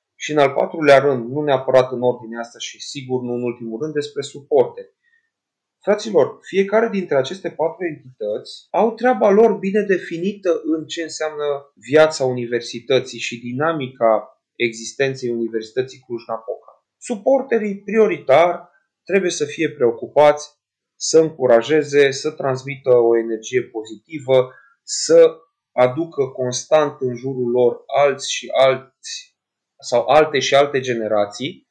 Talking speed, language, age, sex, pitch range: 125 wpm, Romanian, 30-49, male, 120-195 Hz